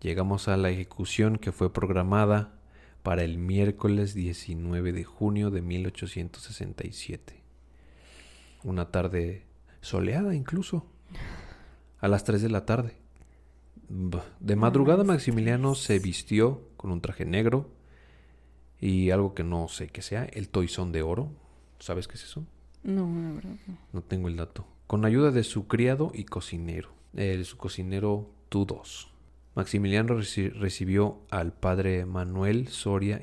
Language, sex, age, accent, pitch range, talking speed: Spanish, male, 40-59, Mexican, 85-110 Hz, 130 wpm